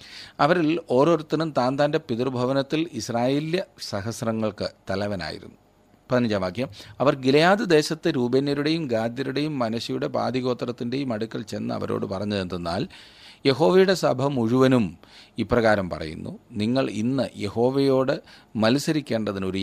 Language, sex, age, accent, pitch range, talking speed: Malayalam, male, 40-59, native, 105-130 Hz, 95 wpm